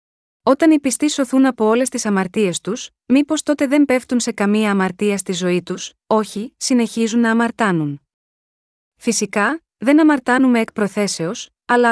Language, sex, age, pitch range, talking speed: Greek, female, 20-39, 200-245 Hz, 145 wpm